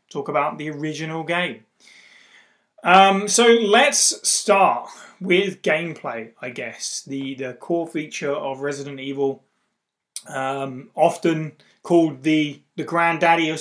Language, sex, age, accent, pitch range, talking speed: English, male, 30-49, British, 140-180 Hz, 120 wpm